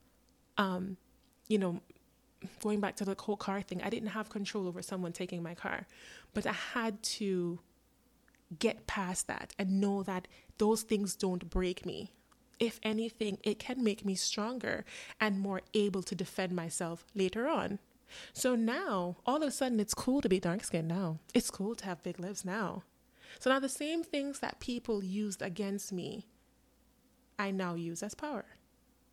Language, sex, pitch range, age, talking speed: English, female, 195-235 Hz, 20-39, 175 wpm